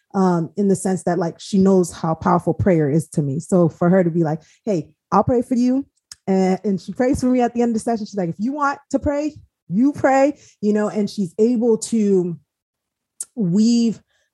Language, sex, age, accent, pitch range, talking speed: English, female, 20-39, American, 165-210 Hz, 220 wpm